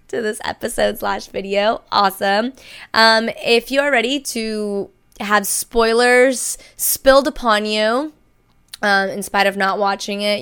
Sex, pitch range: female, 185-215 Hz